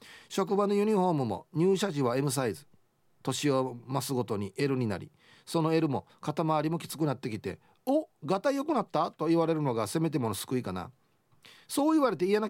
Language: Japanese